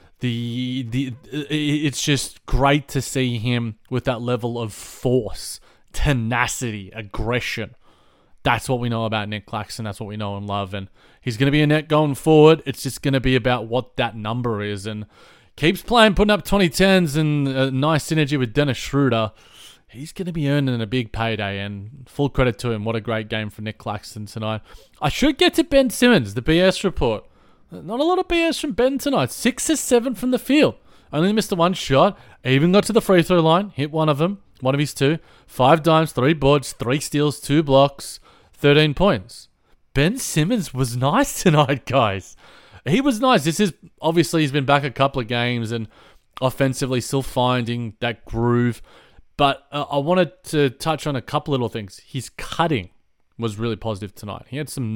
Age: 20-39